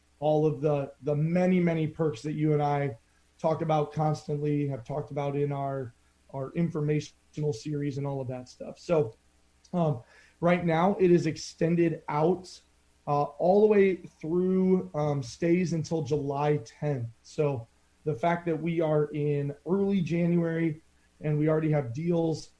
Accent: American